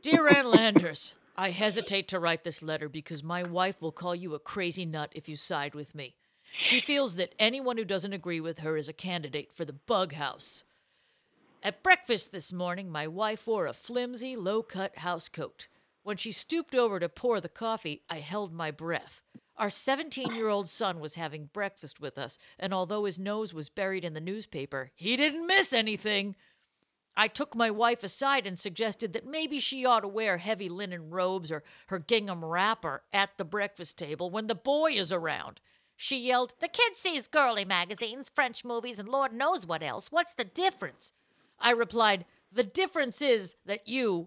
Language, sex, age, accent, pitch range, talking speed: English, female, 50-69, American, 175-245 Hz, 185 wpm